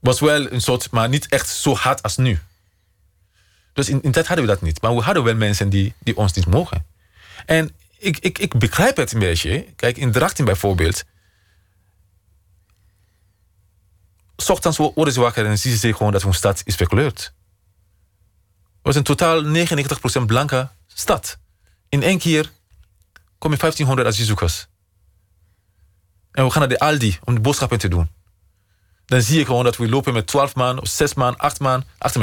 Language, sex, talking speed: Dutch, male, 175 wpm